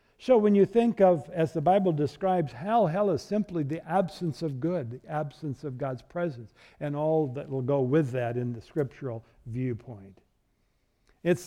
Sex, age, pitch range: male, 60-79, 145-195 Hz